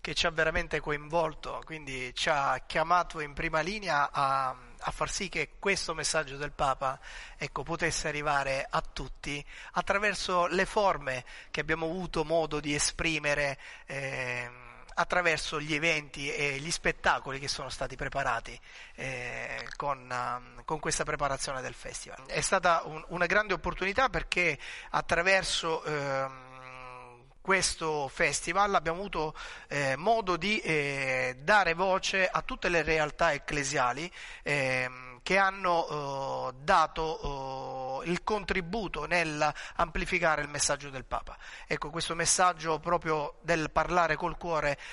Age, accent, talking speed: 30-49, native, 130 wpm